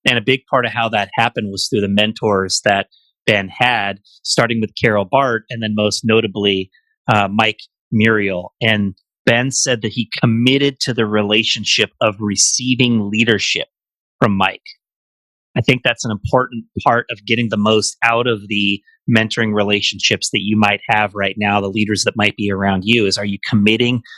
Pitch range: 105-120 Hz